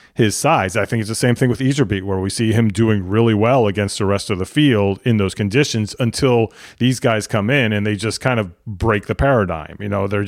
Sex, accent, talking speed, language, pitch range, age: male, American, 245 wpm, English, 100-120 Hz, 30-49